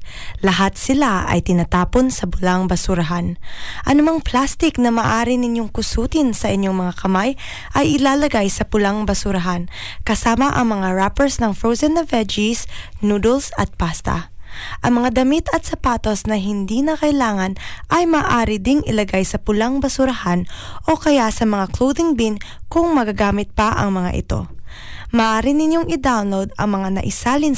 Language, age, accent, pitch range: Filipino, 20-39, native, 195-275 Hz